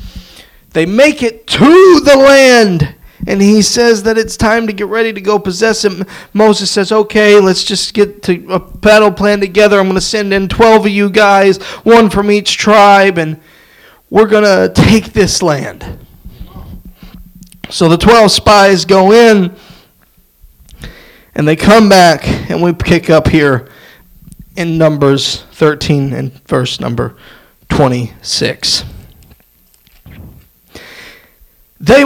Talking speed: 135 wpm